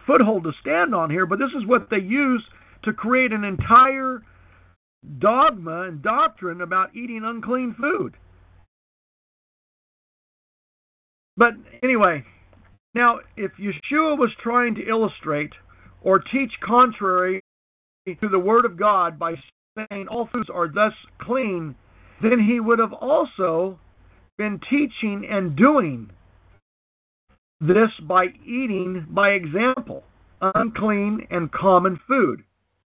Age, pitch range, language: 50-69, 170-240 Hz, English